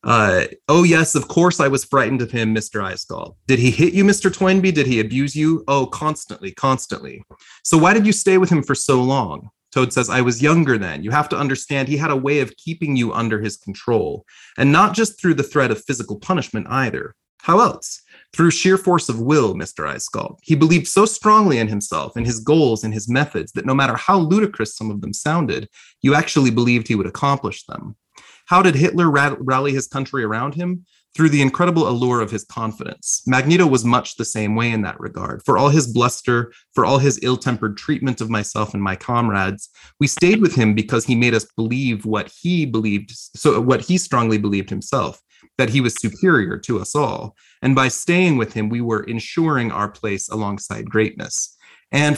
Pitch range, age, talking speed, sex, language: 110-155 Hz, 30-49, 200 wpm, male, English